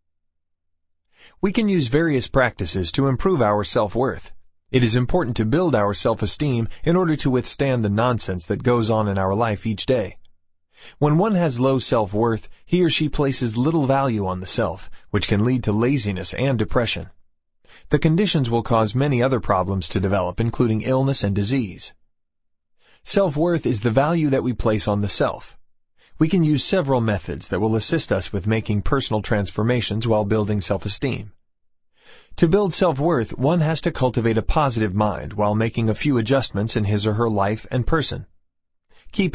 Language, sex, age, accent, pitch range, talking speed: English, male, 30-49, American, 100-135 Hz, 170 wpm